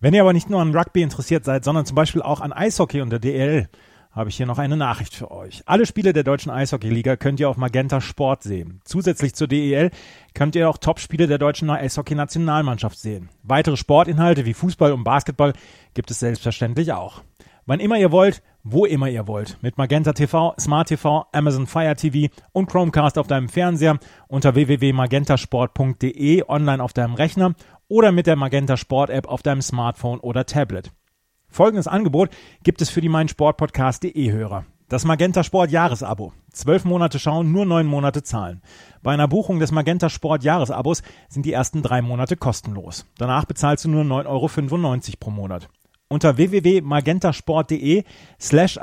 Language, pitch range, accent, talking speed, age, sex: German, 130-165 Hz, German, 170 wpm, 30-49, male